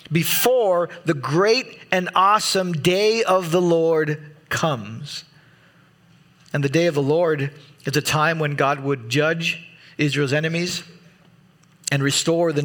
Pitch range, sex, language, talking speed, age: 150-180 Hz, male, English, 135 wpm, 40-59